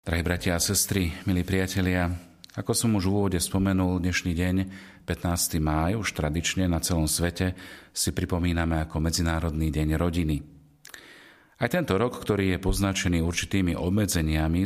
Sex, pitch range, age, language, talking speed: male, 80-95 Hz, 40-59, Slovak, 145 wpm